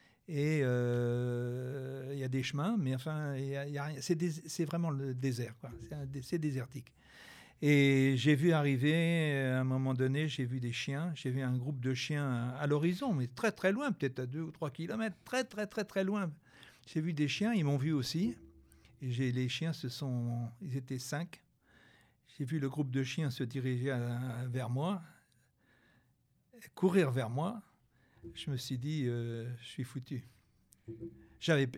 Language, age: French, 60-79